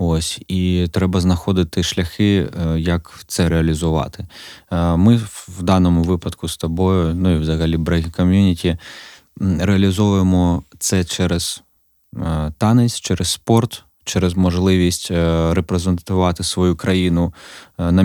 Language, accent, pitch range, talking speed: Ukrainian, native, 85-95 Hz, 105 wpm